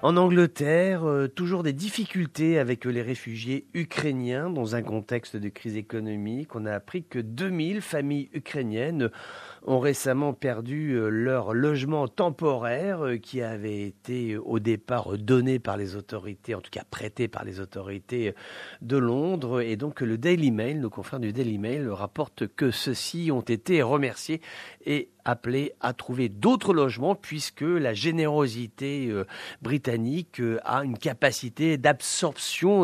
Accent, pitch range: French, 115-150 Hz